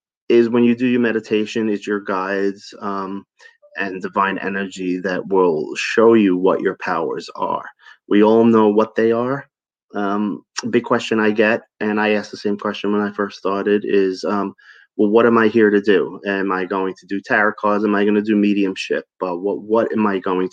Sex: male